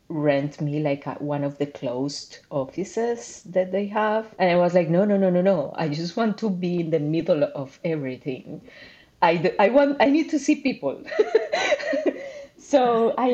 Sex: female